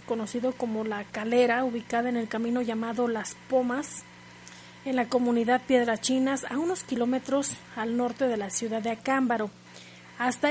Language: Spanish